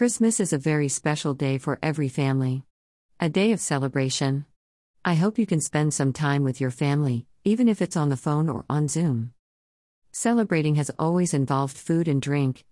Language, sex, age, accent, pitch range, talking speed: English, female, 50-69, American, 130-165 Hz, 185 wpm